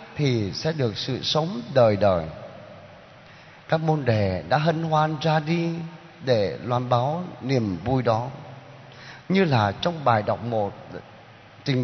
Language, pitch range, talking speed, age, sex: Vietnamese, 130-205 Hz, 140 wpm, 20-39, male